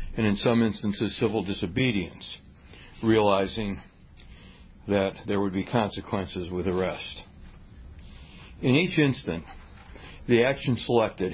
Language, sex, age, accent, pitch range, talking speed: English, male, 60-79, American, 95-115 Hz, 105 wpm